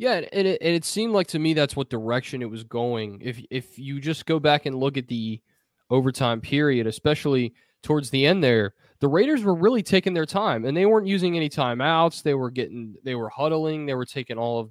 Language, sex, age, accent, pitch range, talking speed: English, male, 20-39, American, 120-160 Hz, 230 wpm